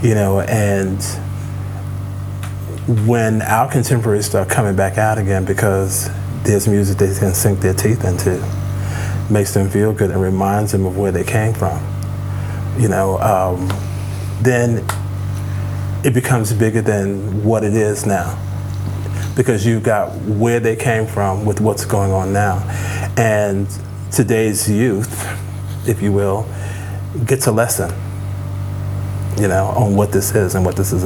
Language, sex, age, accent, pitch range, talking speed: English, male, 40-59, American, 95-110 Hz, 145 wpm